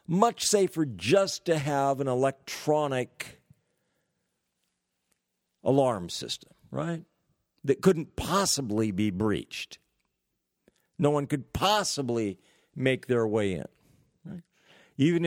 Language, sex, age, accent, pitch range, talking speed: English, male, 50-69, American, 125-165 Hz, 95 wpm